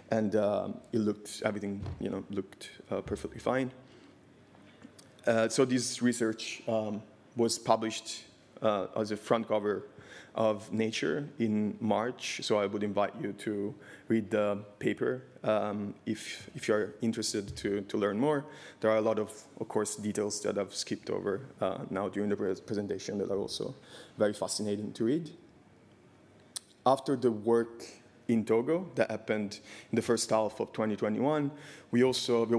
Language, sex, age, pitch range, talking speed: English, male, 20-39, 105-115 Hz, 155 wpm